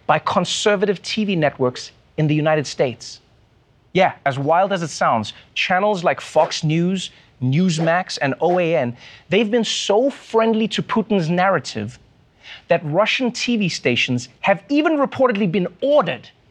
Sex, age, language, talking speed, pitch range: male, 30-49, English, 135 wpm, 140-225 Hz